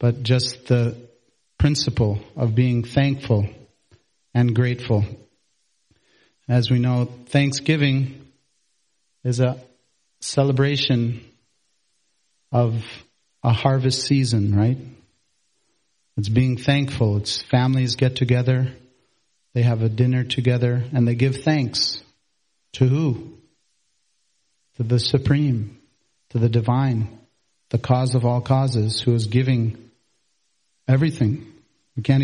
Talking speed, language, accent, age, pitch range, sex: 105 wpm, English, American, 40-59, 115-130 Hz, male